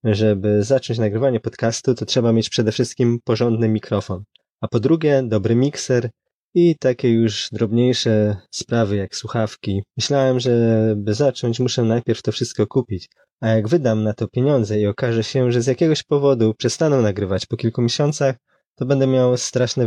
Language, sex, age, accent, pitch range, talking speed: Polish, male, 20-39, native, 110-135 Hz, 165 wpm